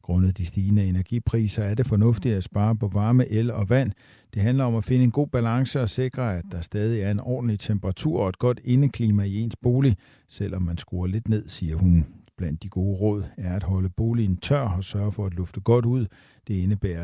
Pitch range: 100-125 Hz